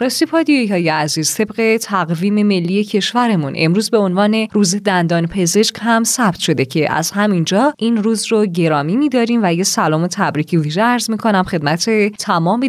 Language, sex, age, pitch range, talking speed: Persian, female, 20-39, 175-230 Hz, 150 wpm